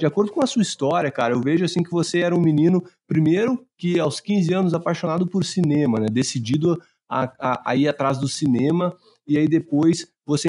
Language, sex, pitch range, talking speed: Portuguese, male, 135-180 Hz, 205 wpm